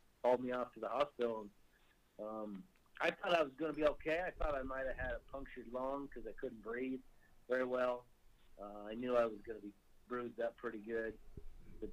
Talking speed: 220 wpm